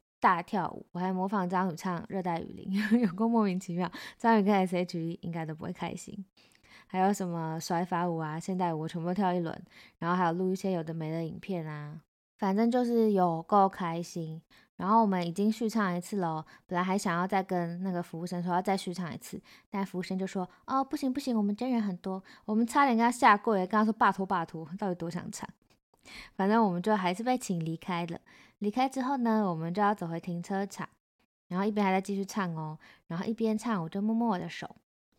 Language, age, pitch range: Chinese, 20-39, 170-205 Hz